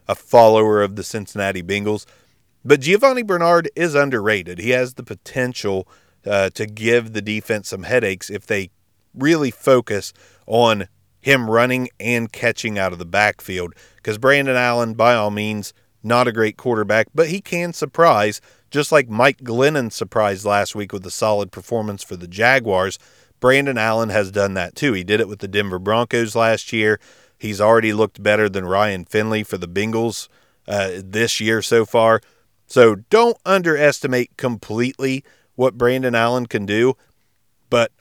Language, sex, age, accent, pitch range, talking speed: English, male, 40-59, American, 100-125 Hz, 165 wpm